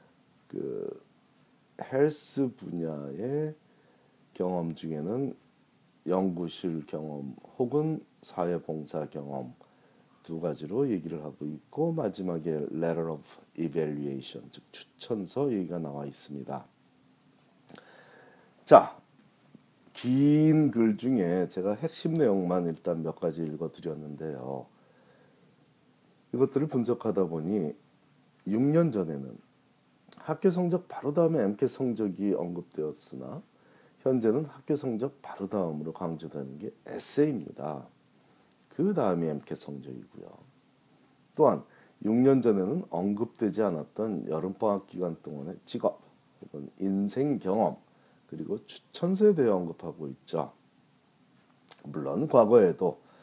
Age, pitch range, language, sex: 40-59, 80-130 Hz, Korean, male